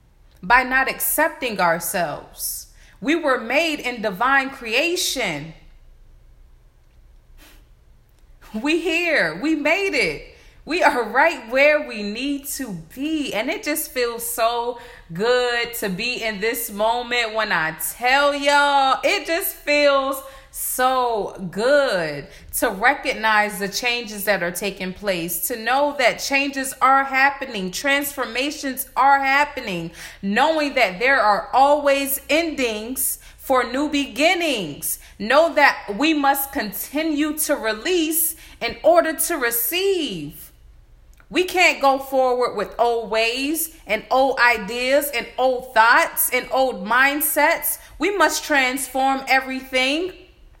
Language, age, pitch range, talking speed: English, 30-49, 225-295 Hz, 120 wpm